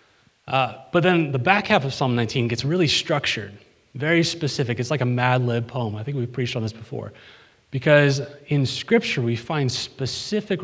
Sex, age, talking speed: male, 30-49, 185 wpm